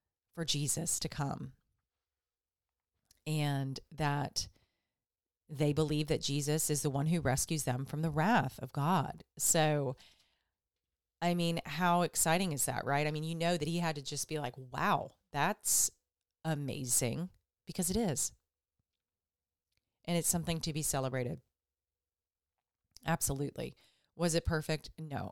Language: English